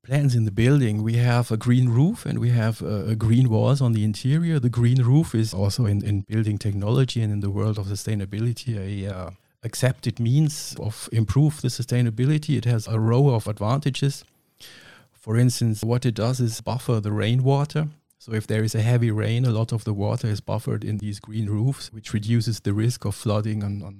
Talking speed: 210 wpm